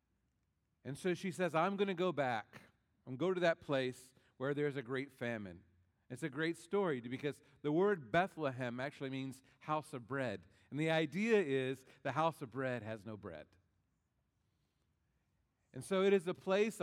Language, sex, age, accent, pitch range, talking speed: English, male, 40-59, American, 145-215 Hz, 180 wpm